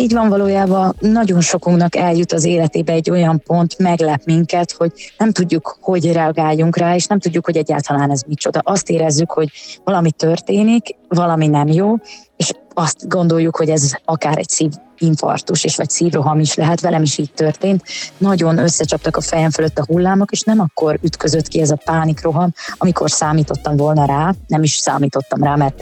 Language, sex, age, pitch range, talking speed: Hungarian, female, 20-39, 155-180 Hz, 175 wpm